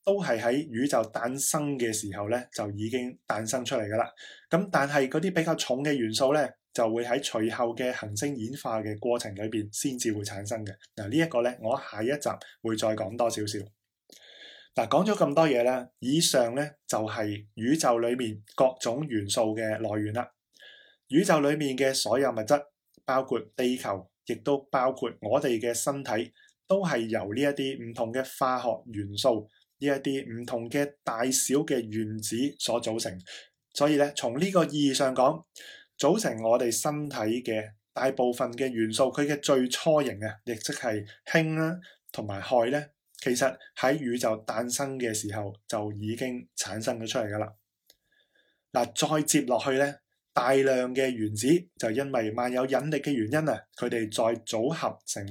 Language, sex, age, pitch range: Chinese, male, 20-39, 110-140 Hz